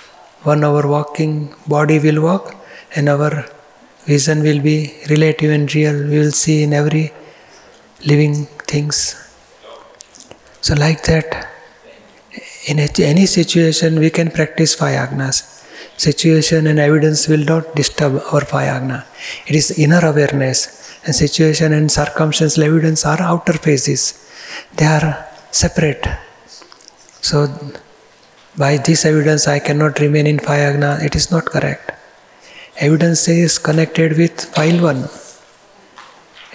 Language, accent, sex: Gujarati, native, male